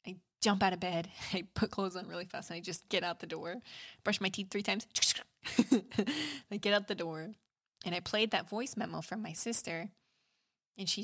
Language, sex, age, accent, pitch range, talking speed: English, female, 20-39, American, 175-220 Hz, 205 wpm